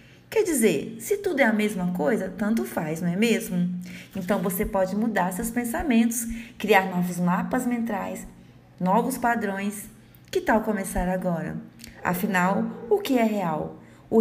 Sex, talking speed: female, 150 wpm